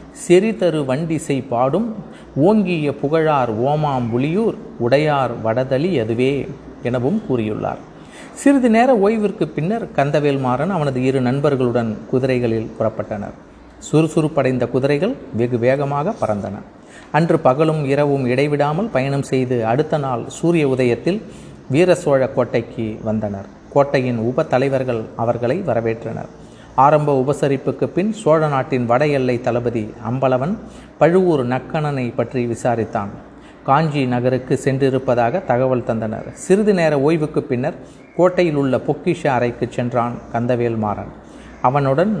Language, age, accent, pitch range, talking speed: Tamil, 30-49, native, 125-165 Hz, 105 wpm